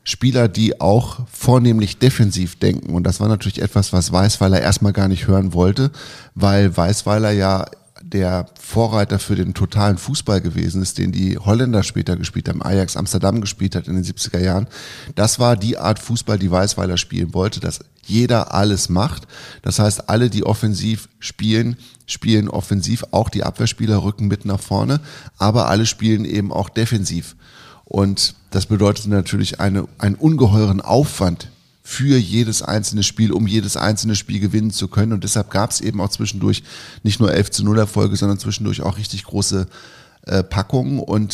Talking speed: 165 wpm